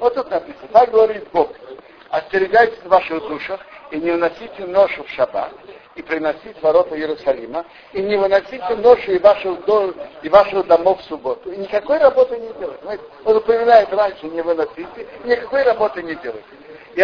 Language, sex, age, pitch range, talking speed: Russian, male, 60-79, 180-275 Hz, 150 wpm